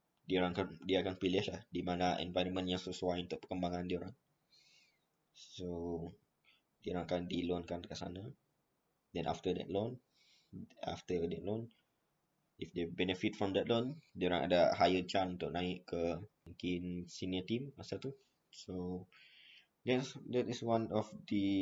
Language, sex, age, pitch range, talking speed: Malay, male, 20-39, 90-105 Hz, 155 wpm